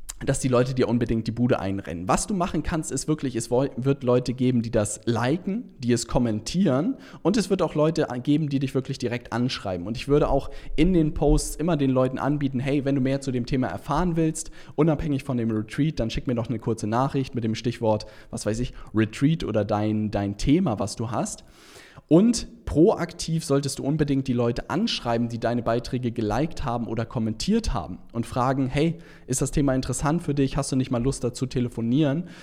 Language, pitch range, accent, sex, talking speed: German, 115-150 Hz, German, male, 205 wpm